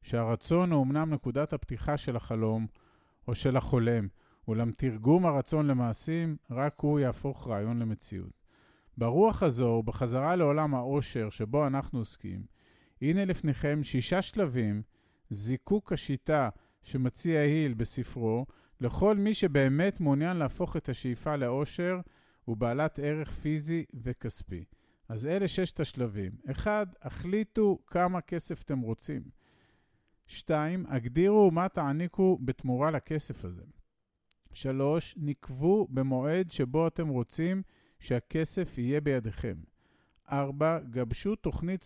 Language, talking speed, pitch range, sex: Hebrew, 110 wpm, 125-165 Hz, male